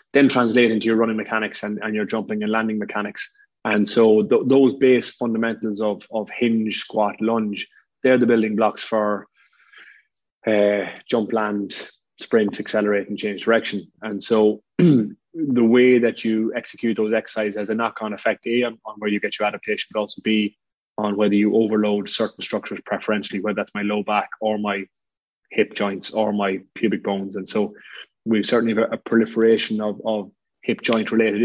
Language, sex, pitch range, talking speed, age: English, male, 105-115 Hz, 175 wpm, 20-39